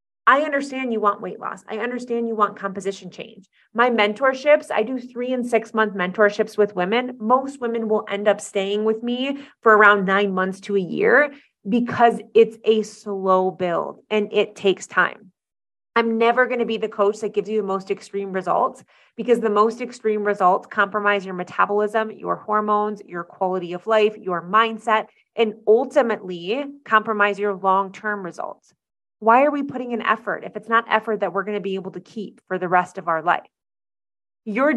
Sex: female